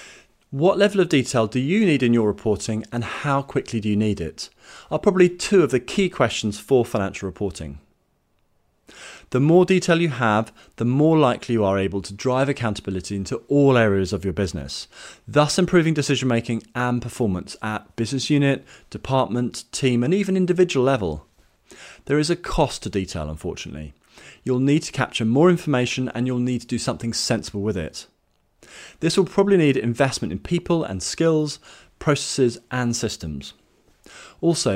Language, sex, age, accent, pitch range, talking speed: English, male, 30-49, British, 110-150 Hz, 165 wpm